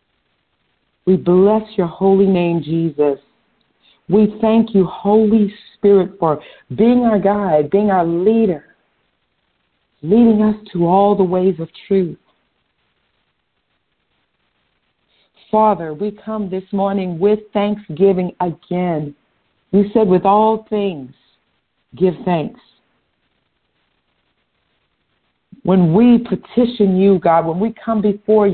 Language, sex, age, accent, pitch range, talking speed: English, female, 50-69, American, 185-220 Hz, 105 wpm